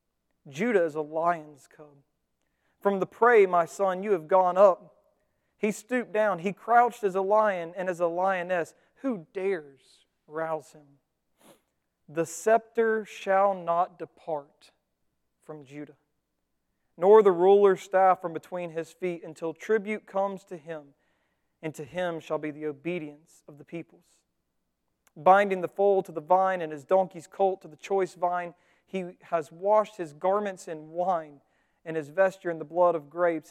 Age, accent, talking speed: 40-59, American, 160 wpm